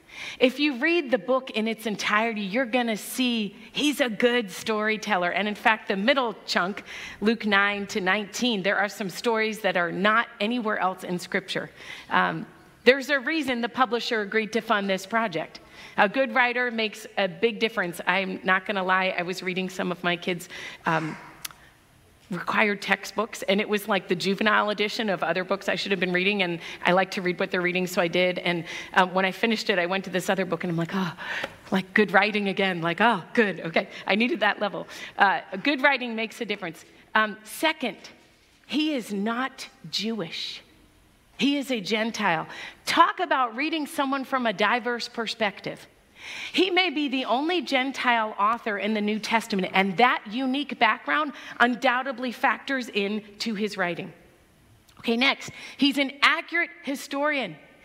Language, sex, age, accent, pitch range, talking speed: English, female, 40-59, American, 195-265 Hz, 180 wpm